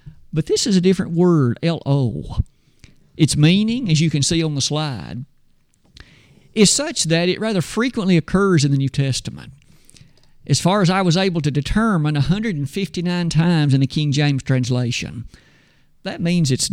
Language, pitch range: English, 145-185 Hz